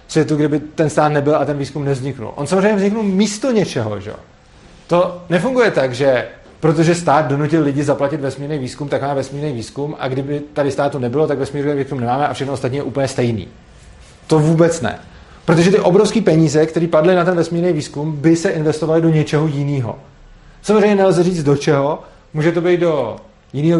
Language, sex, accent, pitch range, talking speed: Czech, male, native, 135-175 Hz, 190 wpm